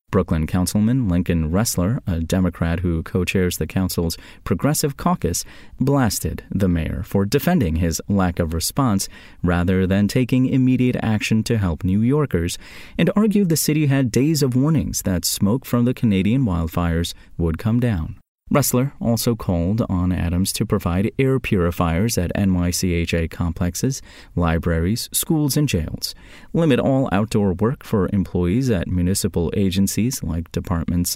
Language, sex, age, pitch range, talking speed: English, male, 30-49, 90-125 Hz, 145 wpm